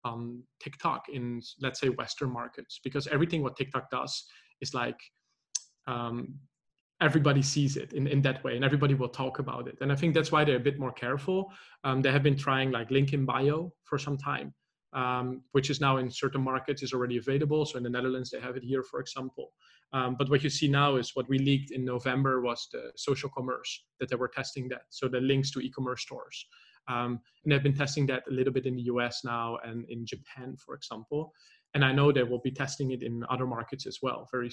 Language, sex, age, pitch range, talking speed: English, male, 20-39, 130-145 Hz, 220 wpm